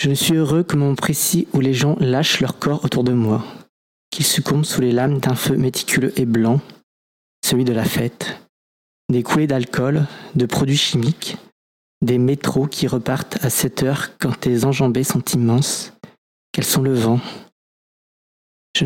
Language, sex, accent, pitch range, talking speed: French, male, French, 125-150 Hz, 170 wpm